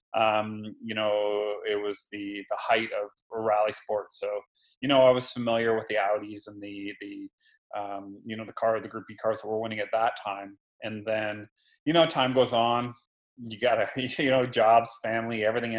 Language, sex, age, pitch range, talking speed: English, male, 30-49, 105-120 Hz, 200 wpm